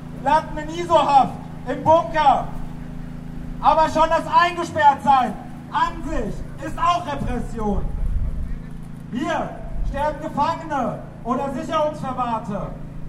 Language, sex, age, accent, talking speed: German, male, 40-59, German, 95 wpm